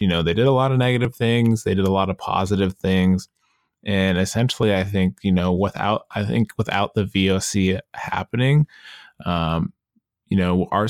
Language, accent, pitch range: English, American, 90-105 Hz